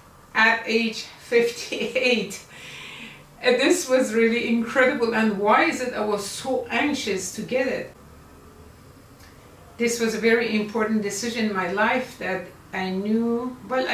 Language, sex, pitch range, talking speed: English, female, 195-240 Hz, 140 wpm